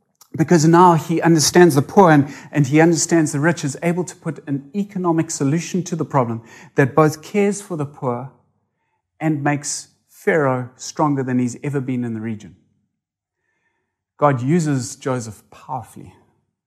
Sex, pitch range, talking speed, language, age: male, 120-165 Hz, 155 wpm, English, 30-49